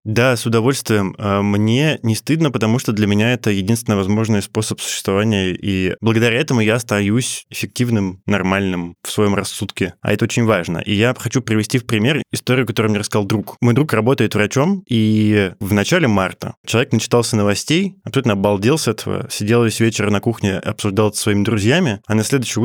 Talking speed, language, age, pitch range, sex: 180 wpm, Russian, 20-39, 100-115 Hz, male